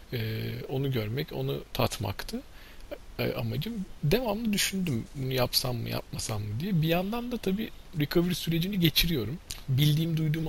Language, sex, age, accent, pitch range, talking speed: Turkish, male, 40-59, native, 115-180 Hz, 125 wpm